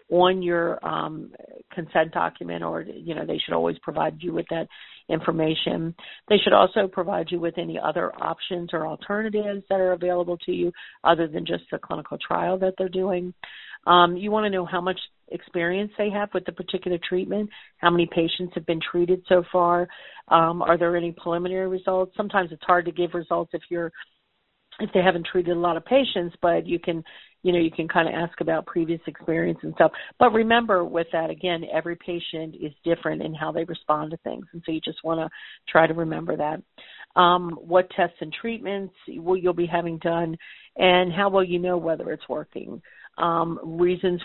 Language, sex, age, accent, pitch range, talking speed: English, female, 50-69, American, 165-185 Hz, 195 wpm